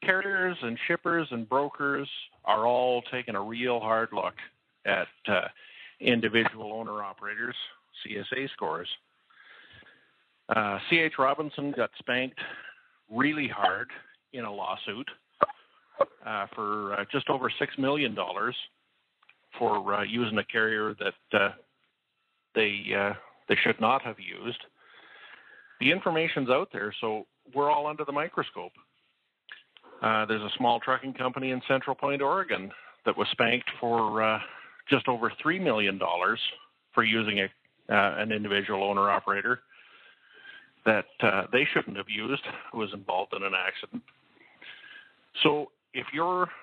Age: 50-69